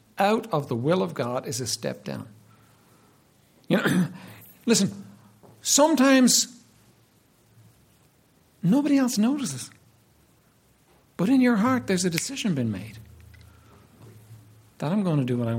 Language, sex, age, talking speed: English, male, 60-79, 125 wpm